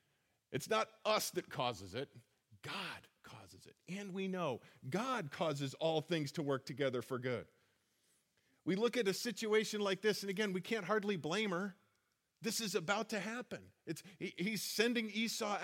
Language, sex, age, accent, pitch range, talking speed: English, male, 40-59, American, 130-205 Hz, 175 wpm